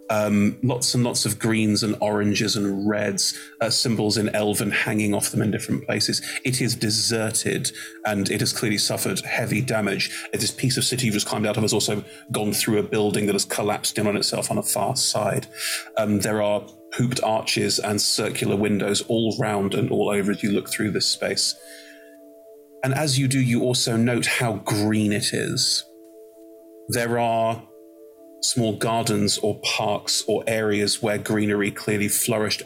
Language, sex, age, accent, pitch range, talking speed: English, male, 30-49, British, 105-120 Hz, 180 wpm